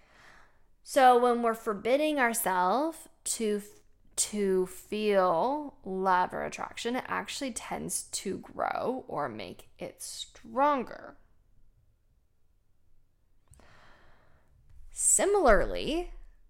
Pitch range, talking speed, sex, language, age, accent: 195-280 Hz, 75 wpm, female, English, 10-29, American